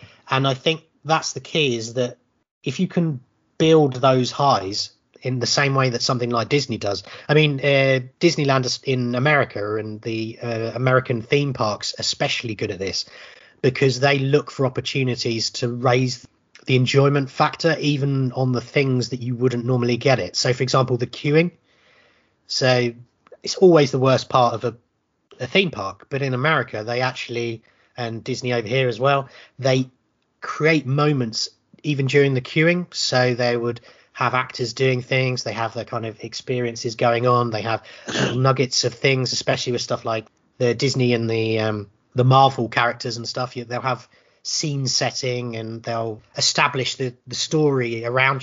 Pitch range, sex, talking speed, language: 120-140 Hz, male, 170 wpm, English